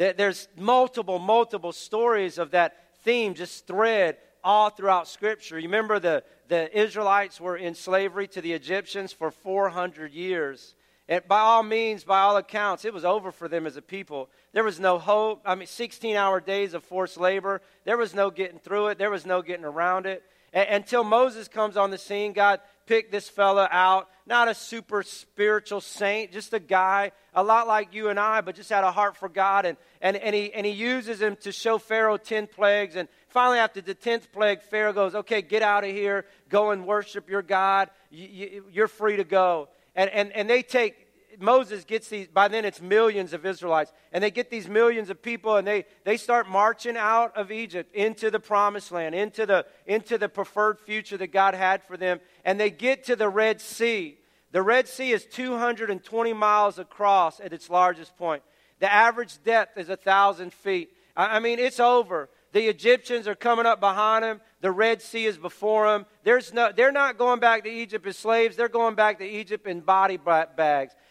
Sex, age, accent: male, 40-59, American